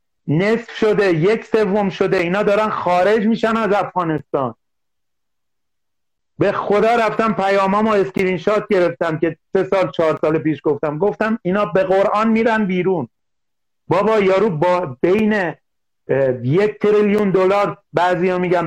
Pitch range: 180-210 Hz